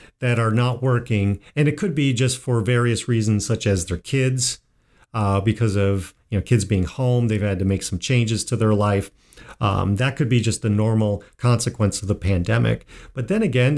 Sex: male